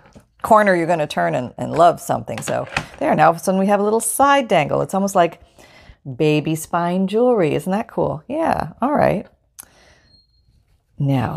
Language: English